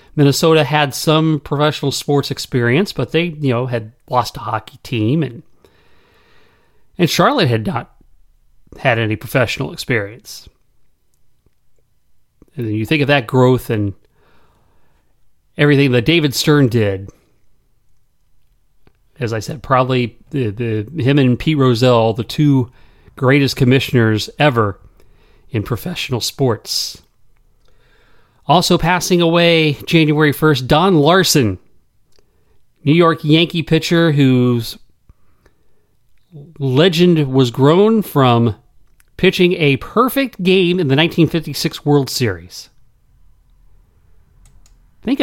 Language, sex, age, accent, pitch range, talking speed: English, male, 40-59, American, 110-155 Hz, 105 wpm